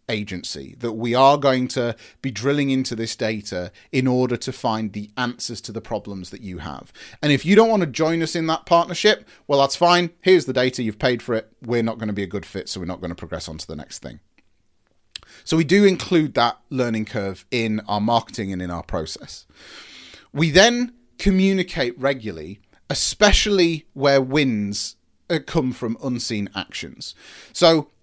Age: 30-49